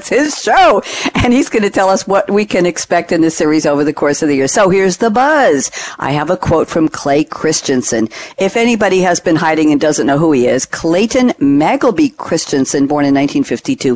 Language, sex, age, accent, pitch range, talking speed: English, female, 50-69, American, 155-225 Hz, 210 wpm